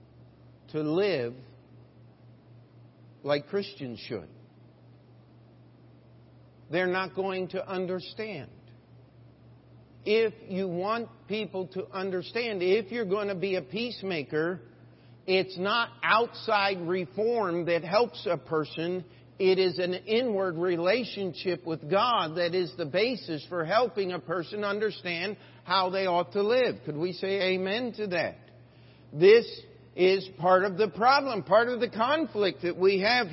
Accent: American